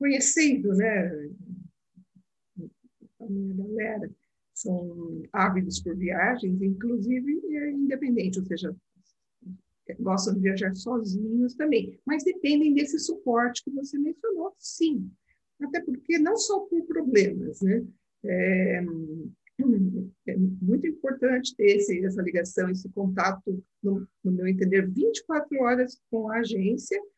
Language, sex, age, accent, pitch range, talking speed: Portuguese, female, 50-69, Brazilian, 200-290 Hz, 115 wpm